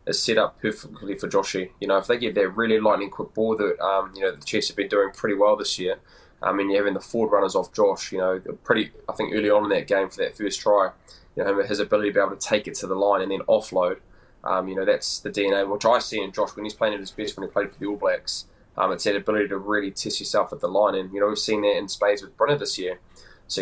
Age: 10-29